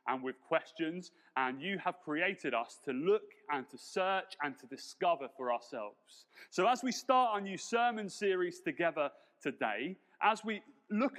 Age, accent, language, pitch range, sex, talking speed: 30-49, British, English, 155-220 Hz, male, 165 wpm